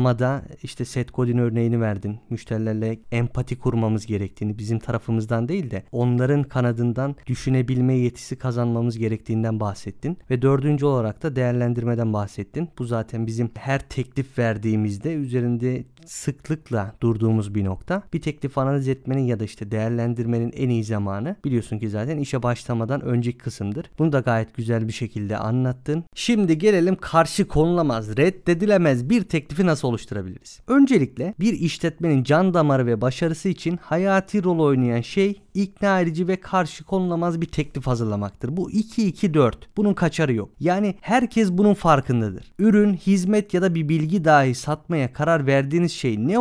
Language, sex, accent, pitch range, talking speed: Turkish, male, native, 120-180 Hz, 145 wpm